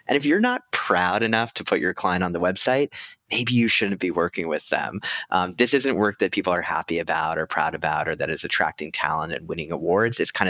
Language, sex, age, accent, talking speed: English, male, 30-49, American, 240 wpm